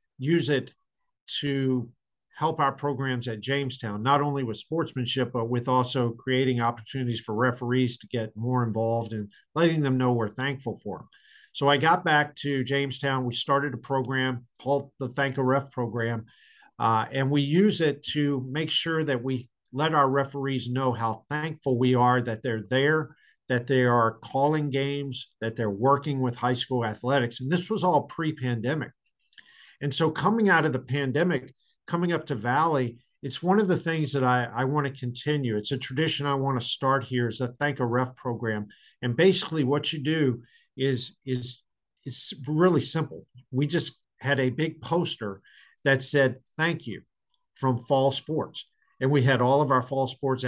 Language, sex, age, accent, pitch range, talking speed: English, male, 50-69, American, 125-150 Hz, 180 wpm